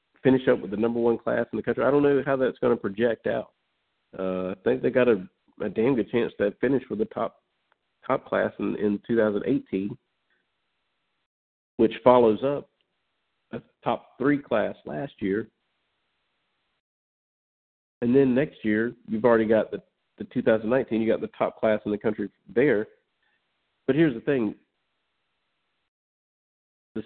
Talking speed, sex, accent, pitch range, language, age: 160 wpm, male, American, 110-130 Hz, English, 50-69